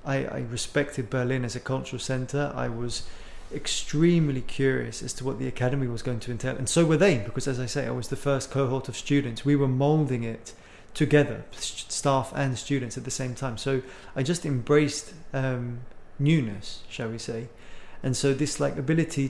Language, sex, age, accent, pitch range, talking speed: English, male, 20-39, British, 125-140 Hz, 190 wpm